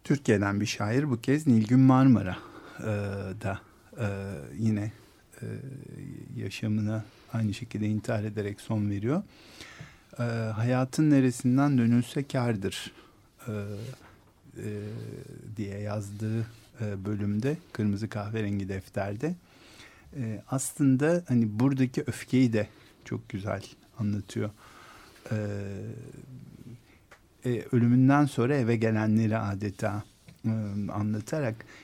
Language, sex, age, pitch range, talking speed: Turkish, male, 50-69, 105-130 Hz, 80 wpm